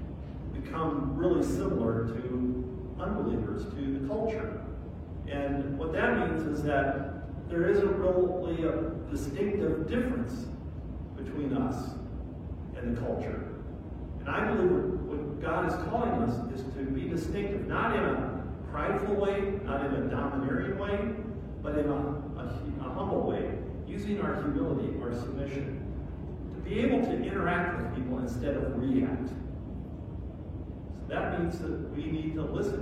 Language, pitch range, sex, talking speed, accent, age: English, 85-130 Hz, male, 140 wpm, American, 50-69